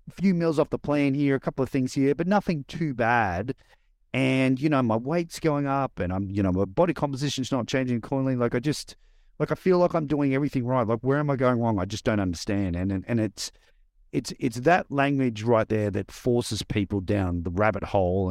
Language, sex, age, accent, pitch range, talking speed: English, male, 40-59, Australian, 95-130 Hz, 230 wpm